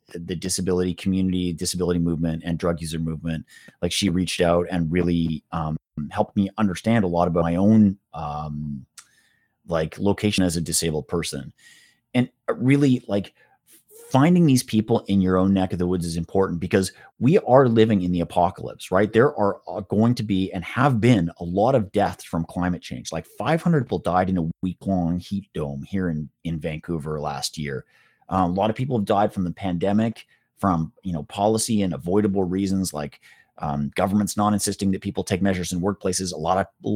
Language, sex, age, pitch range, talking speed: English, male, 30-49, 85-105 Hz, 190 wpm